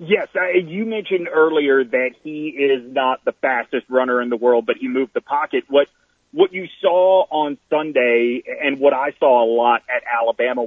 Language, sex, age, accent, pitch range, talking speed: English, male, 30-49, American, 130-185 Hz, 190 wpm